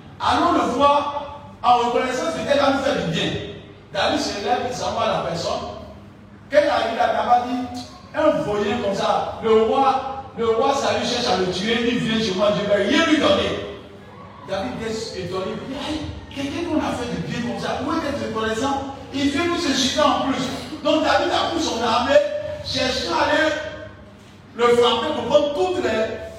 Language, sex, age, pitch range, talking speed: French, male, 50-69, 190-285 Hz, 190 wpm